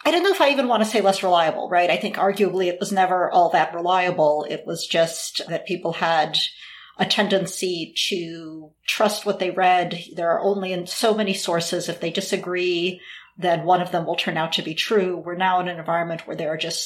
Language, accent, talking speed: English, American, 220 wpm